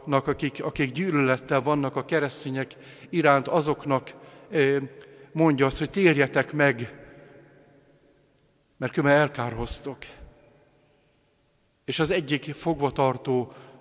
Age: 50-69